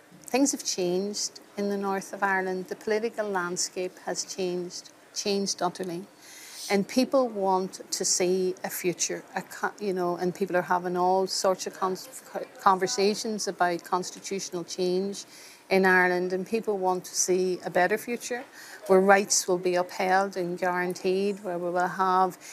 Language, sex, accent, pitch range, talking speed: English, female, Irish, 180-200 Hz, 150 wpm